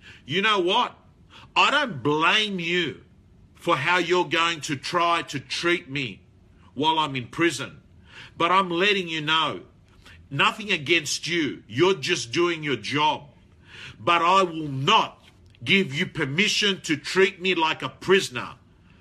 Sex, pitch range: male, 135-190 Hz